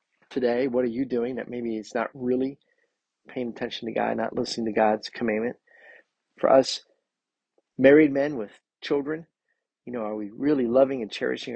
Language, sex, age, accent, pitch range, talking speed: English, male, 40-59, American, 110-140 Hz, 170 wpm